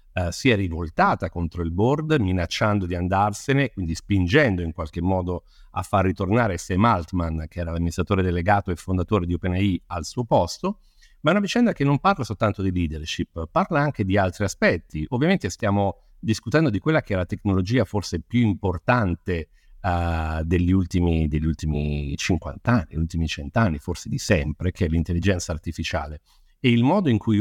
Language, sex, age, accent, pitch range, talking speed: Italian, male, 50-69, native, 90-120 Hz, 175 wpm